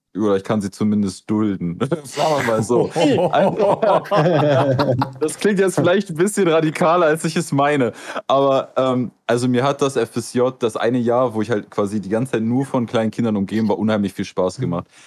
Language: German